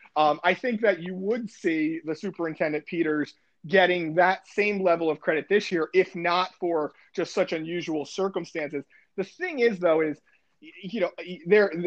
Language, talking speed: English, 165 wpm